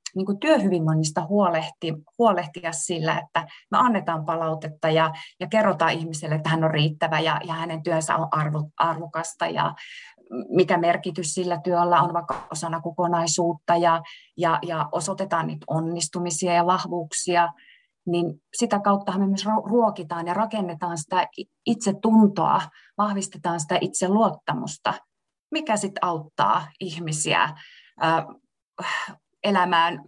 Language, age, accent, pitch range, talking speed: Finnish, 20-39, native, 170-205 Hz, 120 wpm